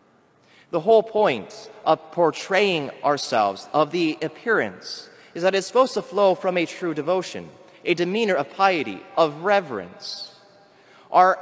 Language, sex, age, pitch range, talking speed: English, male, 30-49, 160-200 Hz, 135 wpm